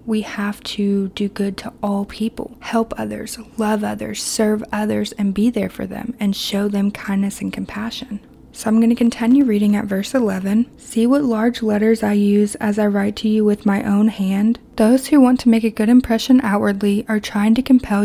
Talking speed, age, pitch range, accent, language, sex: 205 wpm, 20-39, 205-235 Hz, American, English, female